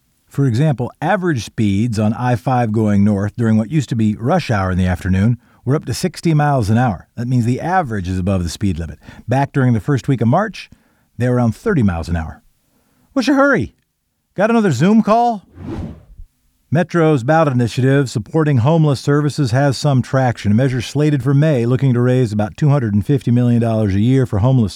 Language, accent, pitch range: English, American, 110-155 Hz